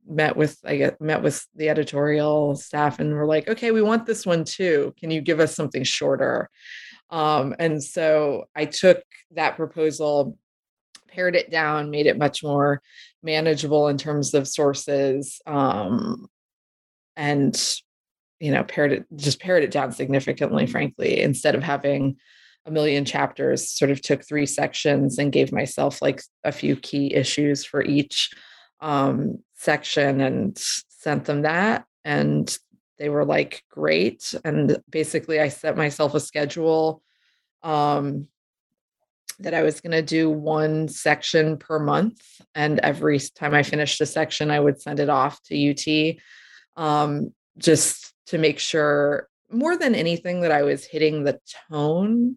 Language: English